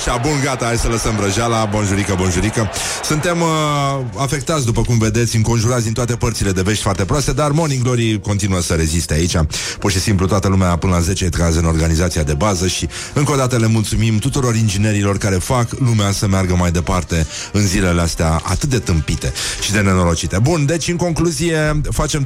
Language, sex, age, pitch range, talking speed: Romanian, male, 30-49, 100-130 Hz, 195 wpm